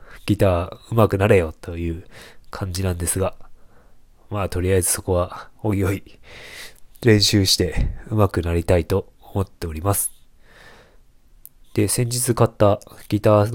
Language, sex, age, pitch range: Japanese, male, 20-39, 90-105 Hz